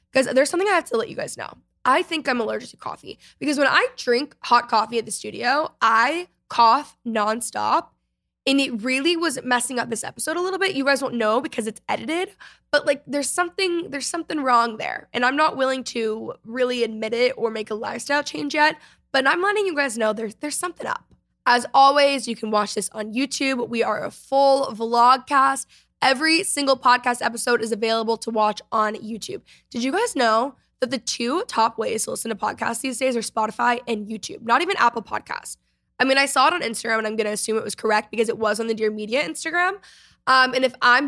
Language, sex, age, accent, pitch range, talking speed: English, female, 10-29, American, 225-290 Hz, 220 wpm